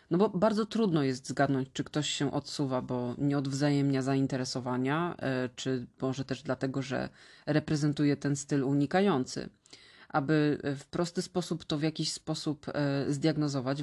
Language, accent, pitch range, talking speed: Polish, native, 135-160 Hz, 140 wpm